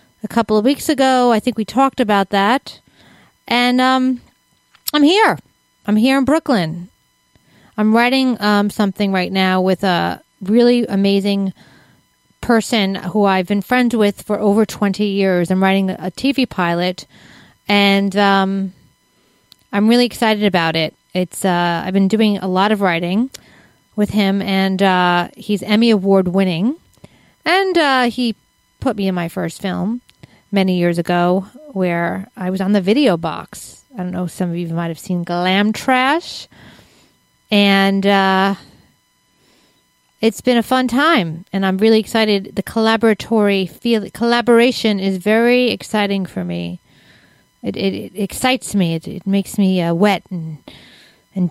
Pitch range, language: 185-235 Hz, English